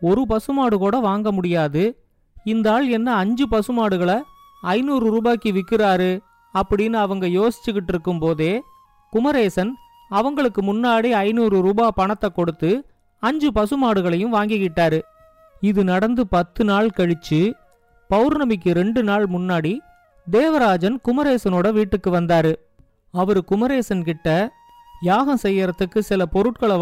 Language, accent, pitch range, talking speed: Tamil, native, 185-240 Hz, 105 wpm